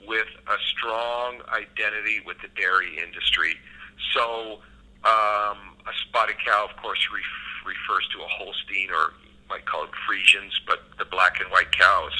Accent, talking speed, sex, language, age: American, 155 wpm, male, English, 50-69